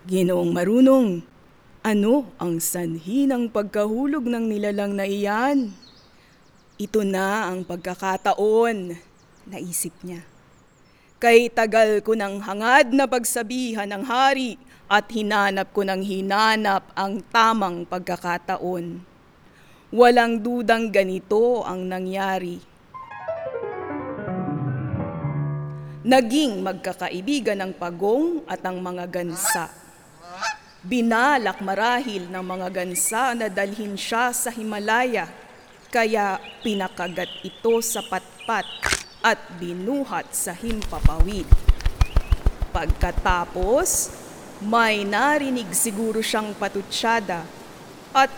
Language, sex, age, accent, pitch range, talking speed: Filipino, female, 20-39, native, 185-240 Hz, 90 wpm